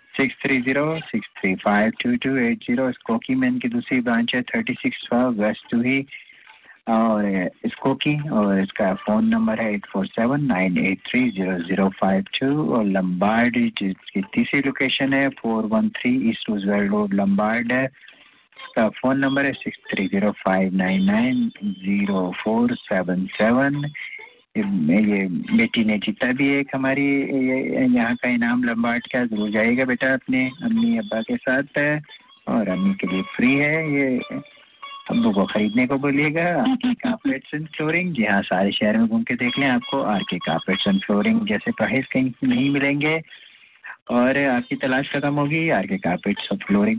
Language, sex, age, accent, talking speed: English, male, 50-69, Indian, 110 wpm